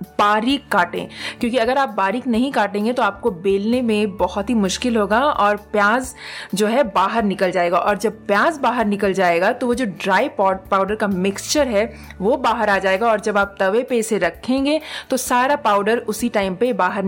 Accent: Indian